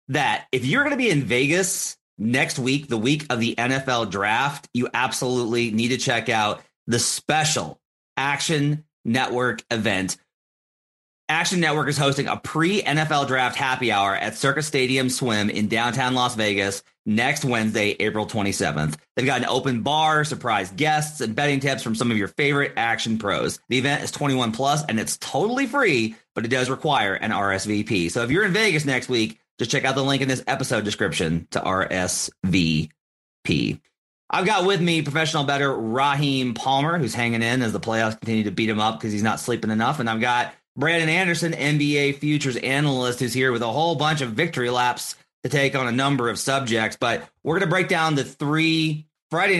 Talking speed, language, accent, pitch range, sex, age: 190 wpm, English, American, 115-150 Hz, male, 30-49